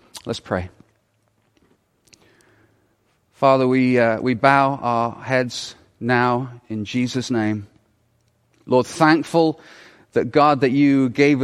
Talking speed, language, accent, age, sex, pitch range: 105 wpm, English, British, 40-59, male, 115-135 Hz